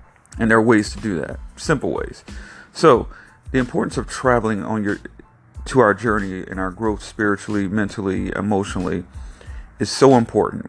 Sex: male